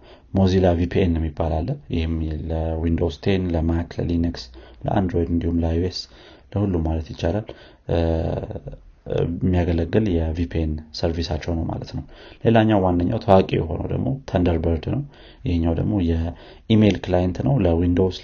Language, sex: Amharic, male